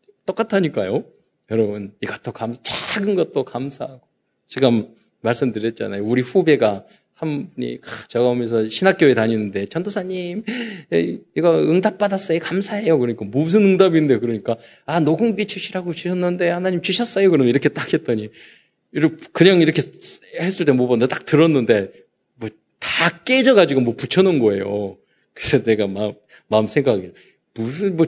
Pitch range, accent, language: 110-175 Hz, native, Korean